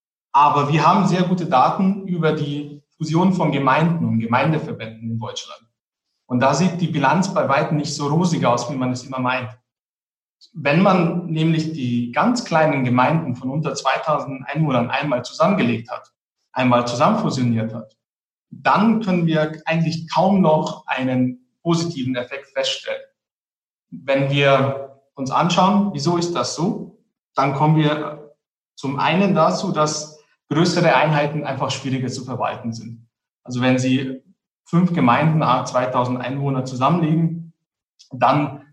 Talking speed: 140 wpm